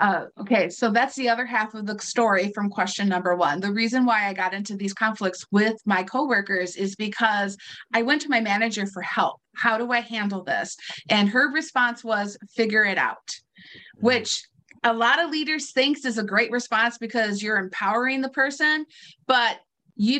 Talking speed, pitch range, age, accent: 185 wpm, 205-255 Hz, 30-49, American